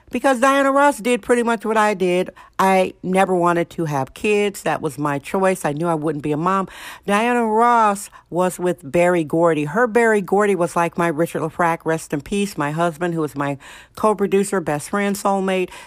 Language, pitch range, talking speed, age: English, 170-205 Hz, 195 wpm, 50-69